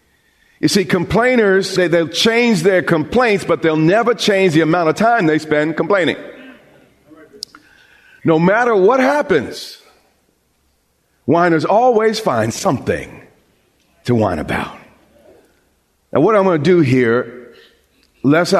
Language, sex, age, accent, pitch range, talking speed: English, male, 40-59, American, 140-195 Hz, 125 wpm